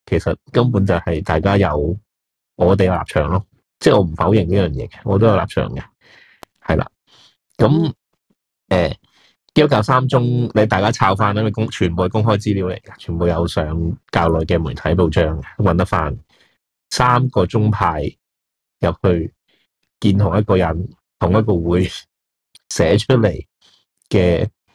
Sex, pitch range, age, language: male, 85-110 Hz, 30-49, Chinese